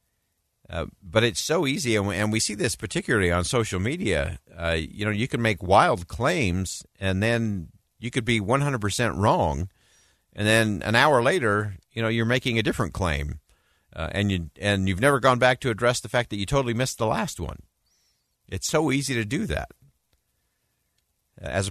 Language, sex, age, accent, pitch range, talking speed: English, male, 50-69, American, 90-120 Hz, 190 wpm